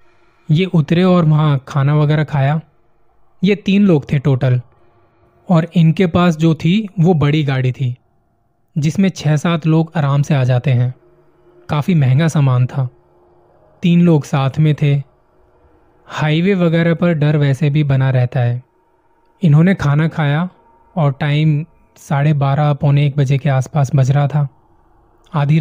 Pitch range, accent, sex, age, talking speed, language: 130-165 Hz, native, male, 20-39, 150 wpm, Hindi